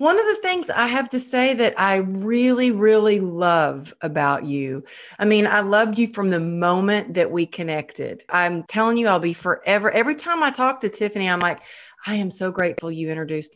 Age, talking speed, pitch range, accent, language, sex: 40-59, 205 wpm, 180-240 Hz, American, English, female